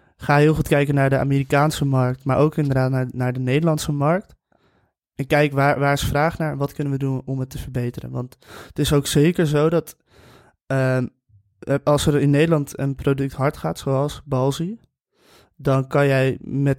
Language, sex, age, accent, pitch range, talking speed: Dutch, male, 20-39, Dutch, 130-145 Hz, 195 wpm